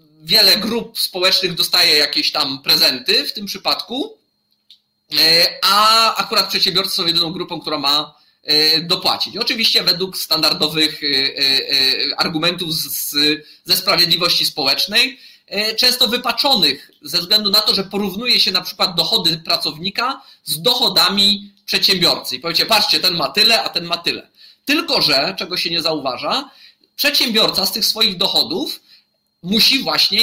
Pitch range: 160-220 Hz